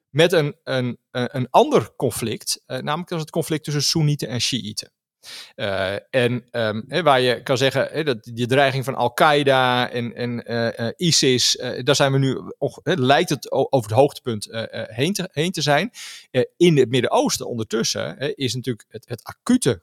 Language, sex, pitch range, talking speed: Dutch, male, 120-155 Hz, 190 wpm